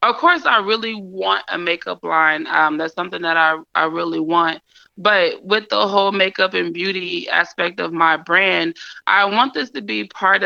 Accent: American